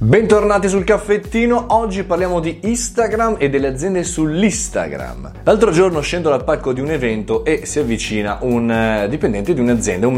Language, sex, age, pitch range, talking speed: Italian, male, 30-49, 95-130 Hz, 160 wpm